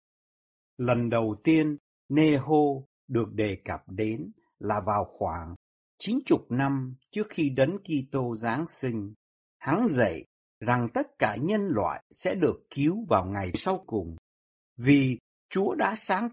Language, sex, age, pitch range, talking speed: Vietnamese, male, 60-79, 100-160 Hz, 145 wpm